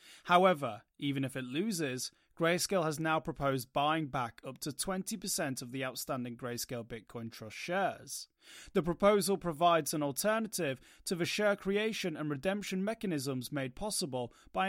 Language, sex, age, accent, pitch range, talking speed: English, male, 30-49, British, 140-185 Hz, 145 wpm